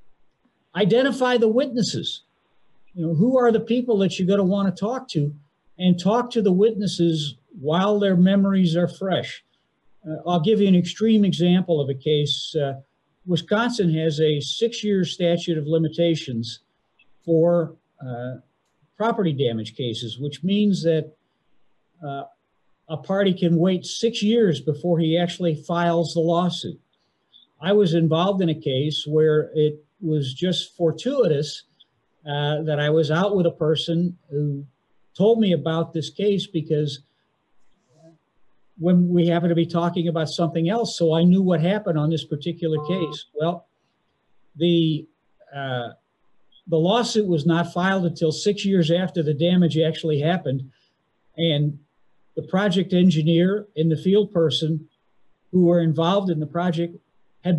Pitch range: 155-190 Hz